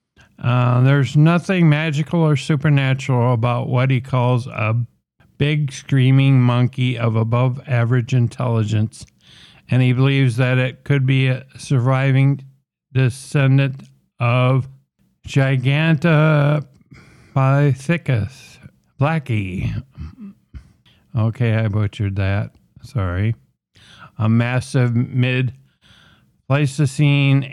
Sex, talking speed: male, 85 wpm